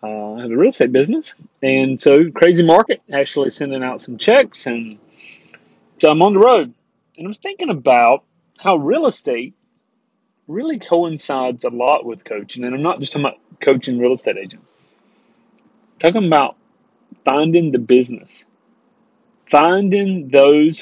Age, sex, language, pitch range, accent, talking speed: 30-49, male, English, 130-215 Hz, American, 155 wpm